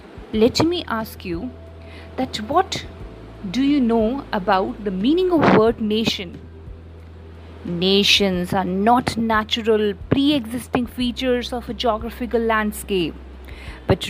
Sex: female